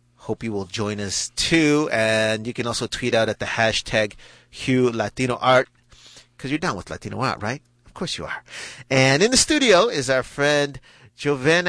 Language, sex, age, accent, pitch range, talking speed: English, male, 30-49, American, 115-150 Hz, 180 wpm